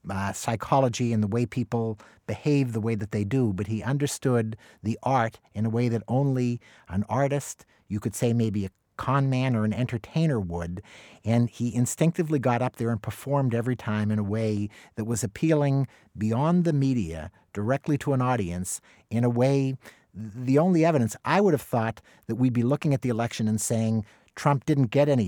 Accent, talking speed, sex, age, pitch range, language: American, 190 wpm, male, 50-69, 110-135 Hz, English